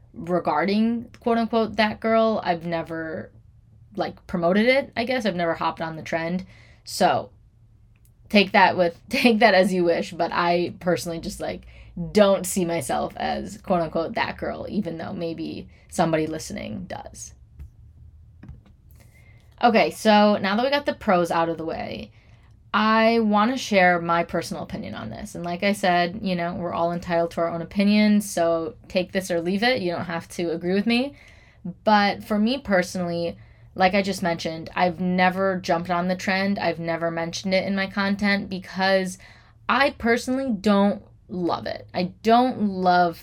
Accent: American